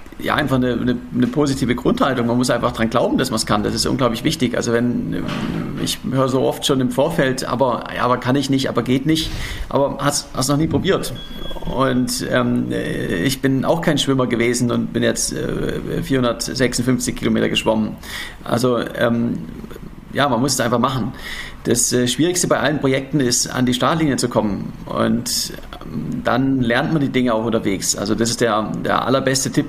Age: 40-59